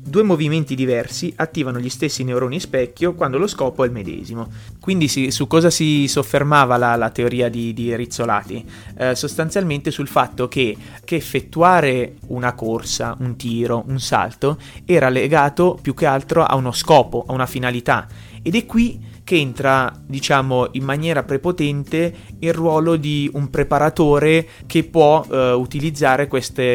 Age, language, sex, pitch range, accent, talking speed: 30-49, Italian, male, 120-155 Hz, native, 155 wpm